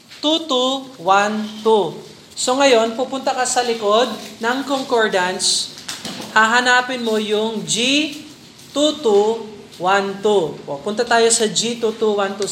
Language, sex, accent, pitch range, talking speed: Filipino, male, native, 195-245 Hz, 100 wpm